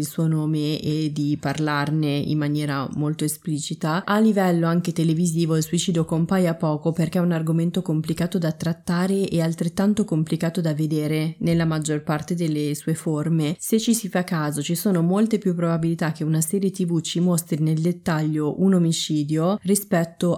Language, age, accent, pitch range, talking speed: Italian, 20-39, native, 155-185 Hz, 165 wpm